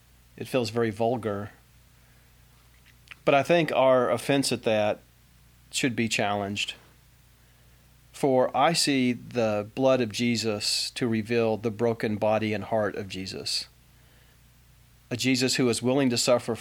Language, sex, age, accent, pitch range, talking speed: English, male, 40-59, American, 110-130 Hz, 135 wpm